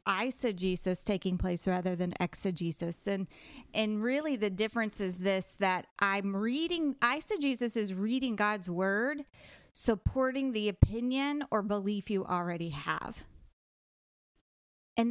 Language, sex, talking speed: English, female, 120 wpm